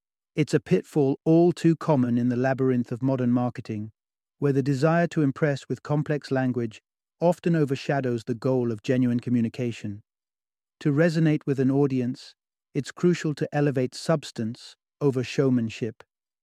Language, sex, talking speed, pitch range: English, male, 140 wpm, 125-155 Hz